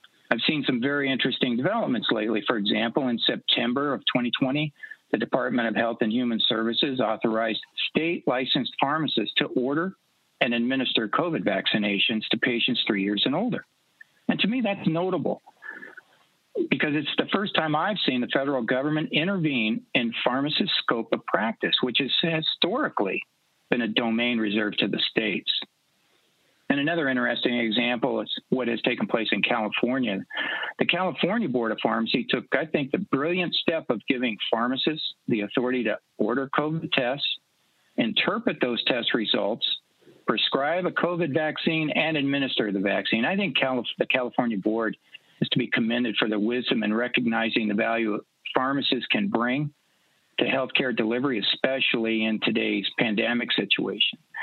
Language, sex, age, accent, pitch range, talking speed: English, male, 50-69, American, 115-165 Hz, 150 wpm